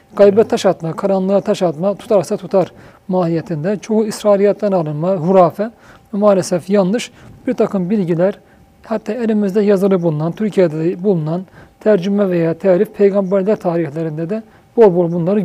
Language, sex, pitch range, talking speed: Turkish, male, 180-215 Hz, 130 wpm